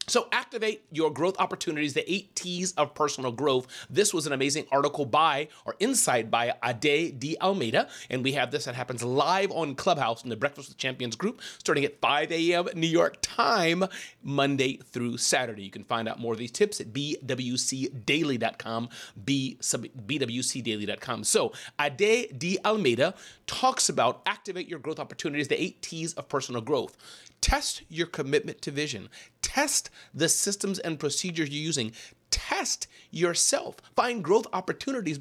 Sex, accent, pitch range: male, American, 130-180 Hz